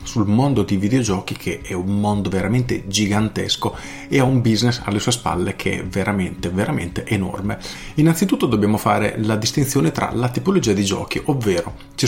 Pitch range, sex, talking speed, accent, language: 95-120 Hz, male, 170 wpm, native, Italian